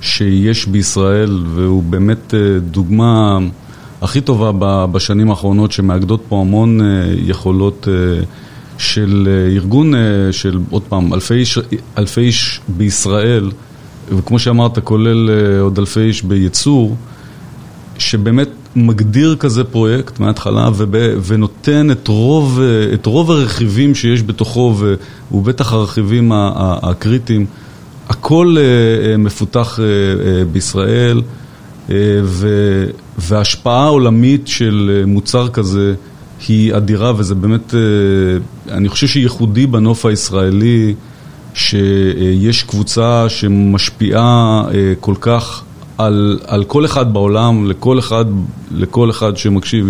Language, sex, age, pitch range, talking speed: Hebrew, male, 30-49, 100-120 Hz, 90 wpm